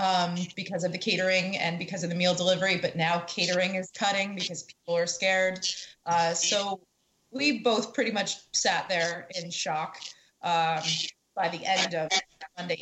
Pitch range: 175-210 Hz